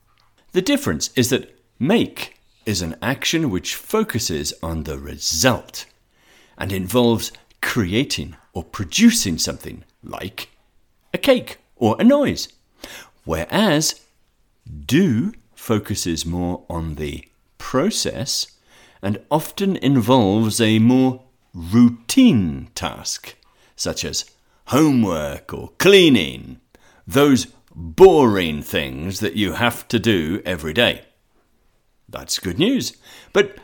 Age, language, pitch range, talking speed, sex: 60-79, English, 85-130 Hz, 105 wpm, male